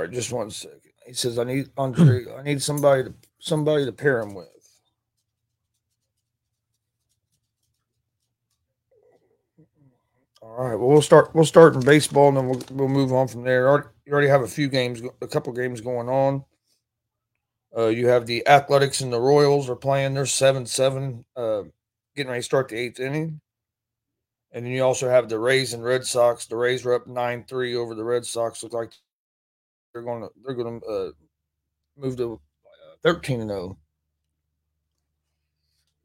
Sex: male